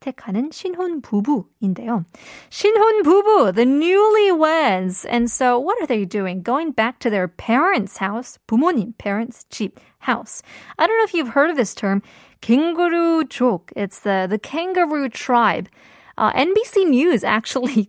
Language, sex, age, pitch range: Korean, female, 20-39, 200-290 Hz